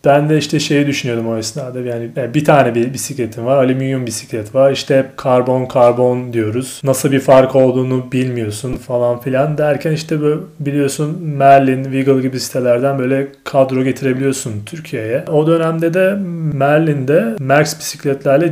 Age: 30-49